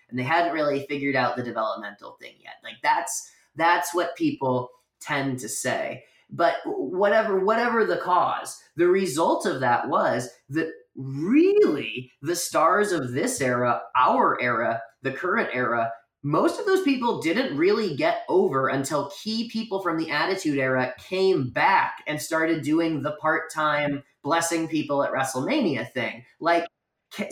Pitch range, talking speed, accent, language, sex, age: 140-190 Hz, 150 wpm, American, English, male, 20-39